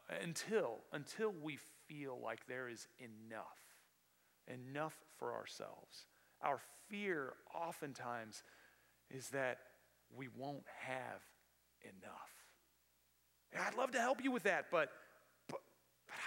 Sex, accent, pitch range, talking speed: male, American, 115-175 Hz, 120 wpm